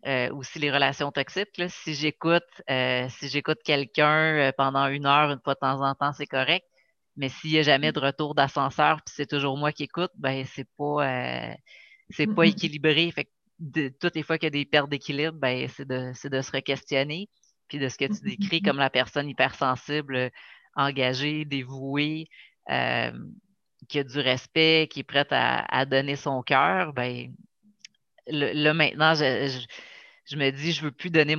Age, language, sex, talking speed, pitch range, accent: 30-49, French, female, 195 wpm, 135-150 Hz, Canadian